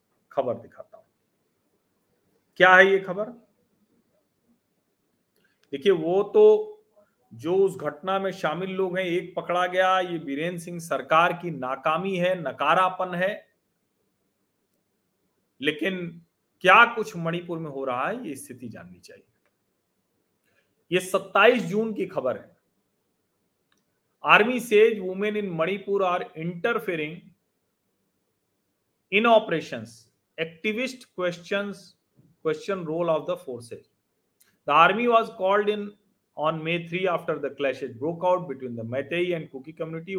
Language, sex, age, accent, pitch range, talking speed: Hindi, male, 40-59, native, 160-210 Hz, 120 wpm